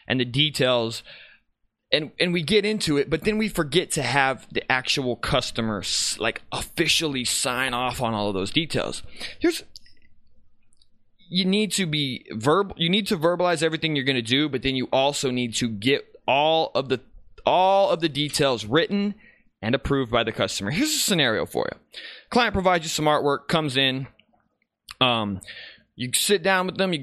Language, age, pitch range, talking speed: English, 20-39, 125-180 Hz, 180 wpm